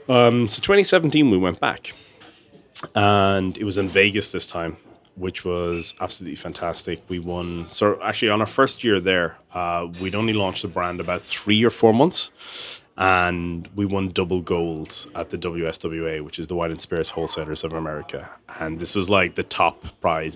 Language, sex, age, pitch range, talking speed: English, male, 30-49, 85-100 Hz, 180 wpm